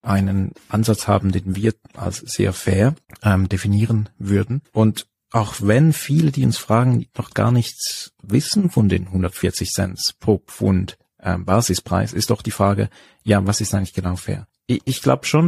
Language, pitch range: German, 95-110 Hz